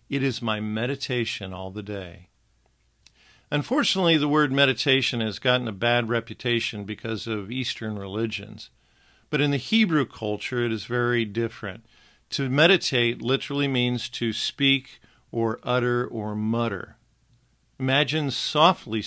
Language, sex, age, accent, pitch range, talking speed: English, male, 50-69, American, 110-145 Hz, 130 wpm